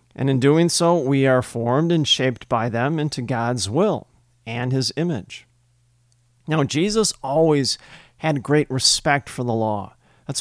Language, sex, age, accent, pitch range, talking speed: English, male, 40-59, American, 120-150 Hz, 155 wpm